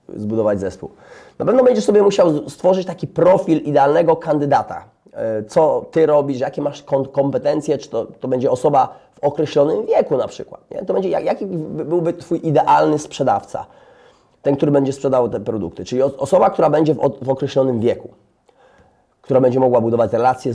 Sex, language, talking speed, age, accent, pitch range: male, Polish, 160 wpm, 30-49, native, 110-150 Hz